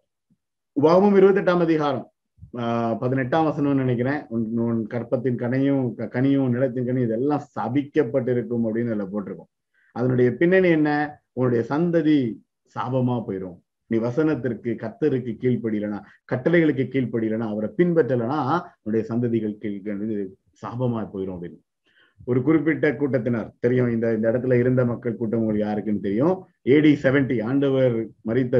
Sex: male